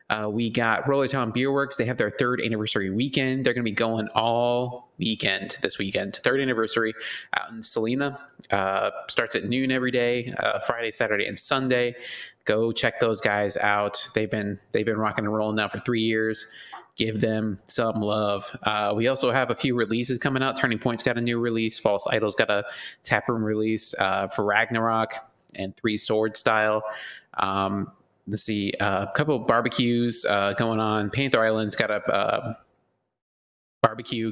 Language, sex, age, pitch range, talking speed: English, male, 20-39, 105-125 Hz, 175 wpm